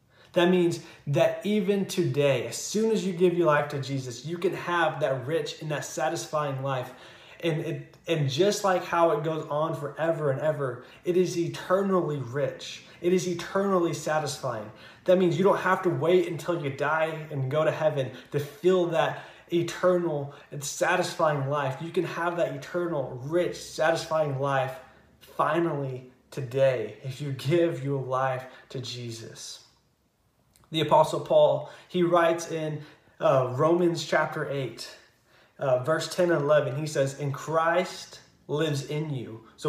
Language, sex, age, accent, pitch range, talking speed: English, male, 20-39, American, 135-170 Hz, 155 wpm